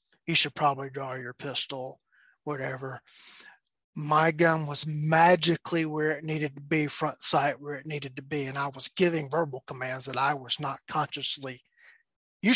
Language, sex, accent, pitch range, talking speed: English, male, American, 145-175 Hz, 165 wpm